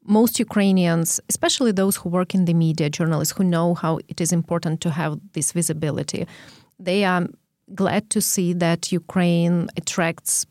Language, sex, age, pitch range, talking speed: English, female, 30-49, 170-200 Hz, 160 wpm